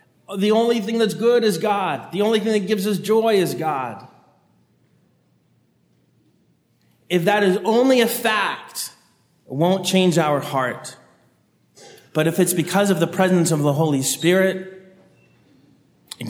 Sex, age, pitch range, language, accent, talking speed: male, 30-49, 135-180 Hz, English, American, 145 wpm